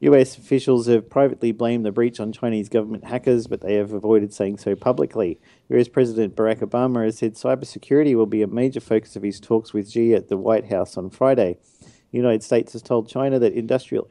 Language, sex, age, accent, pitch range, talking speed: English, male, 50-69, Australian, 105-125 Hz, 210 wpm